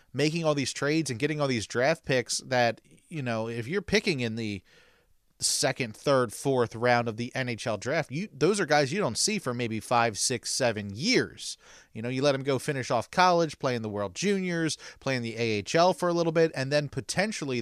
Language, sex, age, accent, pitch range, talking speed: English, male, 30-49, American, 115-155 Hz, 215 wpm